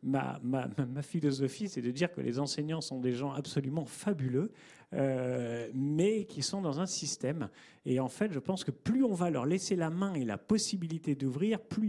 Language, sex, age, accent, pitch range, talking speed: French, male, 40-59, French, 135-200 Hz, 200 wpm